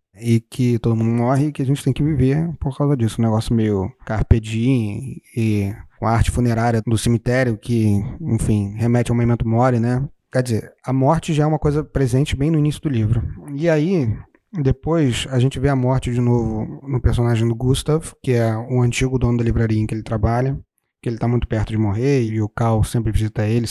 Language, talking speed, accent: Portuguese, 220 wpm, Brazilian